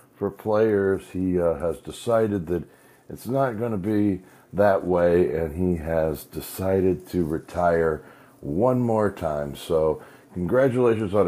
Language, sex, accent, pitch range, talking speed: English, male, American, 80-105 Hz, 140 wpm